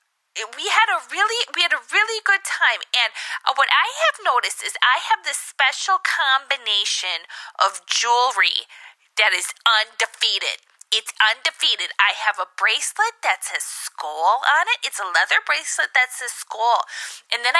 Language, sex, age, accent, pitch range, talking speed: English, female, 20-39, American, 255-395 Hz, 155 wpm